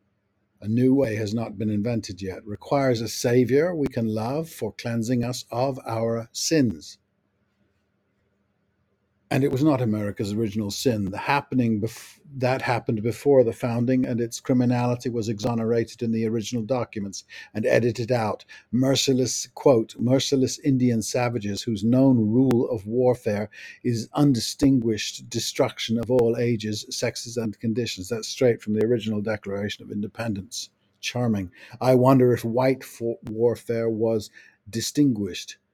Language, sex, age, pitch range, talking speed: English, male, 50-69, 105-125 Hz, 140 wpm